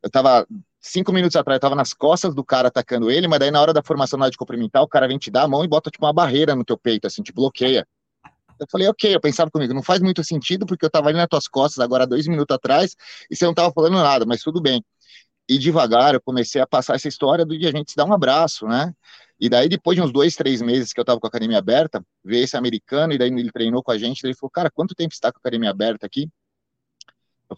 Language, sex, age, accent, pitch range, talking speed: Portuguese, male, 30-49, Brazilian, 125-155 Hz, 275 wpm